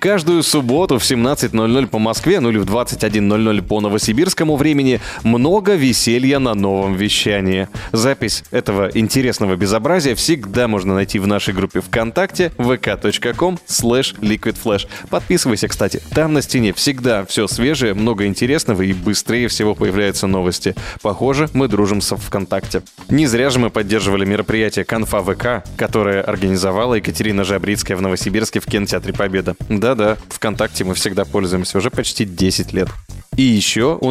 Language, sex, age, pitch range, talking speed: Russian, male, 20-39, 100-125 Hz, 145 wpm